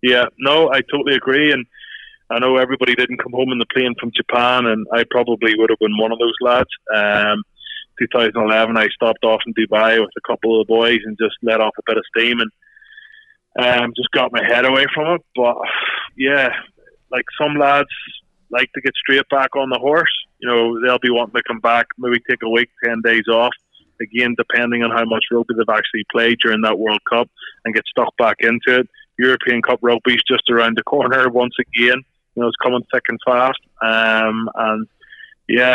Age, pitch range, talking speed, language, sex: 20-39, 110-125 Hz, 210 wpm, English, male